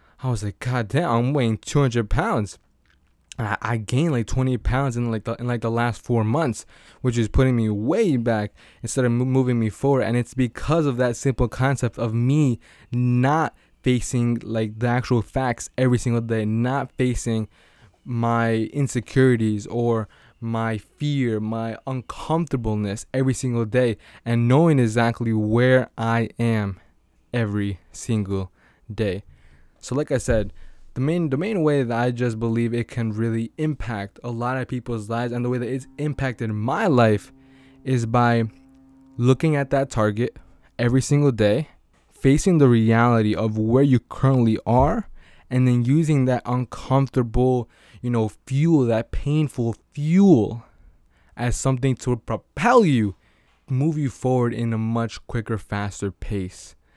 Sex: male